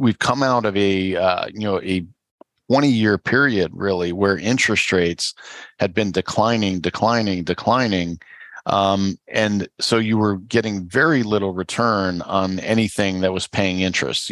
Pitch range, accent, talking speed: 95-115 Hz, American, 155 wpm